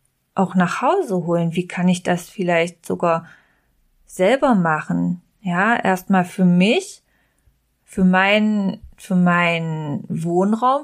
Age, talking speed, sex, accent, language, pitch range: 20-39, 115 wpm, female, German, German, 180-215 Hz